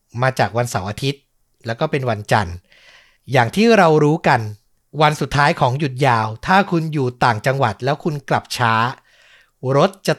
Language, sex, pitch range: Thai, male, 130-175 Hz